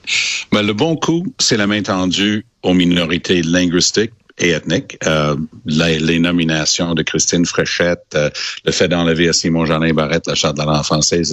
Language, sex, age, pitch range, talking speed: French, male, 60-79, 75-95 Hz, 175 wpm